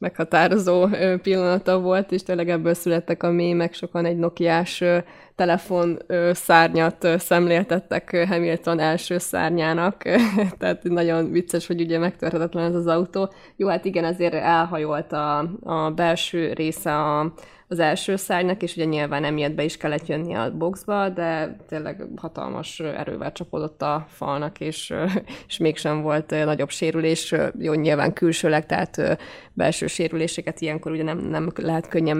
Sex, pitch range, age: female, 160-180 Hz, 20-39